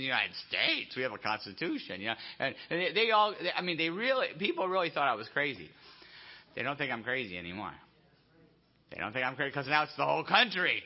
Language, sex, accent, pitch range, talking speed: English, male, American, 145-185 Hz, 220 wpm